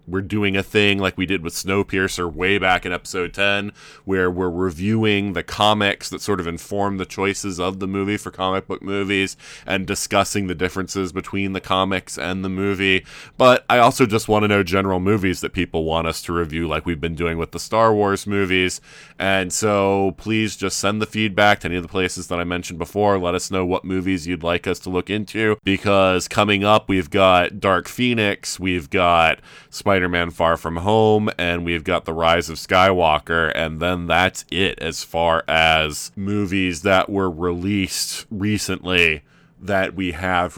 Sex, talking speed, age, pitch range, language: male, 190 wpm, 20-39, 85-100 Hz, English